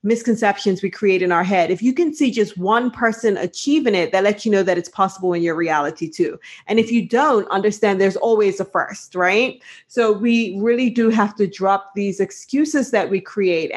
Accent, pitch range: American, 195-245 Hz